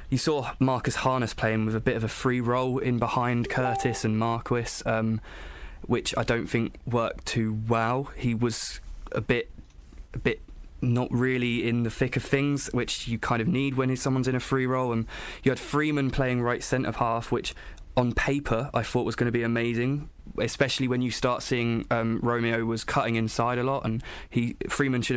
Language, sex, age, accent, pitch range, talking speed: English, male, 20-39, British, 115-130 Hz, 200 wpm